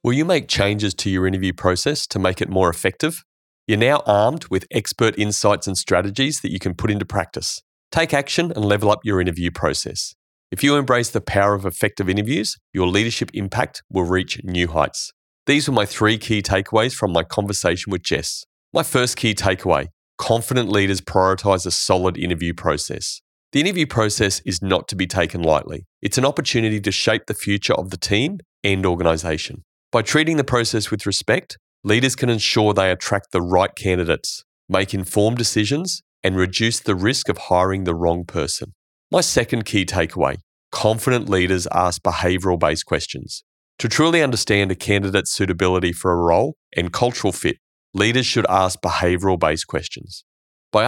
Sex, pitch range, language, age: male, 90-115 Hz, English, 30-49